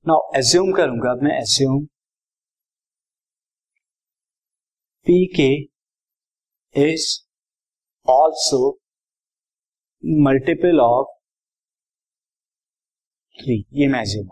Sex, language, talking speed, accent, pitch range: male, Hindi, 60 wpm, native, 135-160 Hz